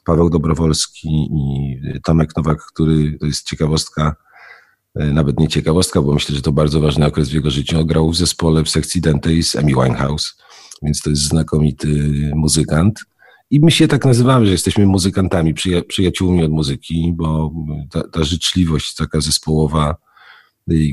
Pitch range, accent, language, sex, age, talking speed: 75-85 Hz, native, Polish, male, 40-59, 155 wpm